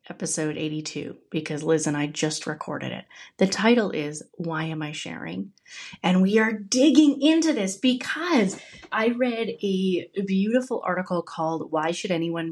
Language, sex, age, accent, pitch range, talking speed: English, female, 30-49, American, 155-220 Hz, 155 wpm